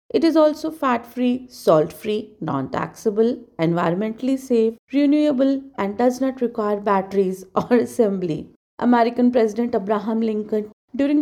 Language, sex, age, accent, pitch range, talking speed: English, female, 40-59, Indian, 205-270 Hz, 110 wpm